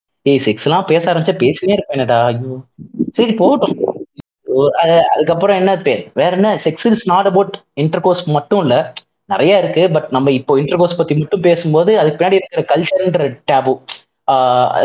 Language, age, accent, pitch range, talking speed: Tamil, 20-39, native, 135-200 Hz, 135 wpm